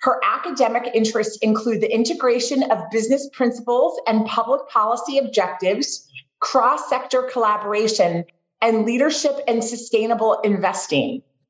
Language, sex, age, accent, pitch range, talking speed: English, female, 30-49, American, 215-275 Hz, 105 wpm